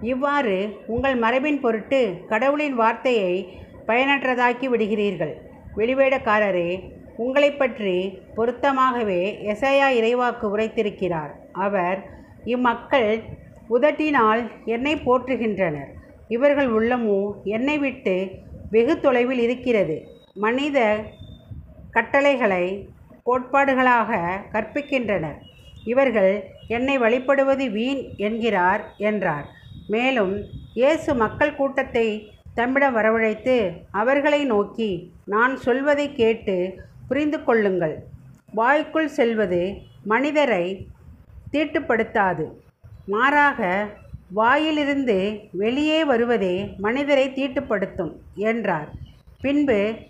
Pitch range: 205-270 Hz